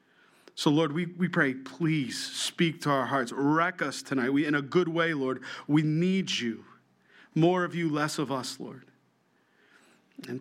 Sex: male